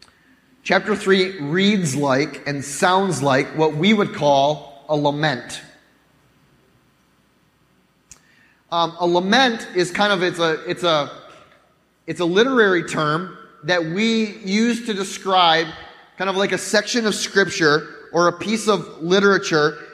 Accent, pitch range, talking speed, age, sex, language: American, 165-205 Hz, 130 wpm, 30-49, male, English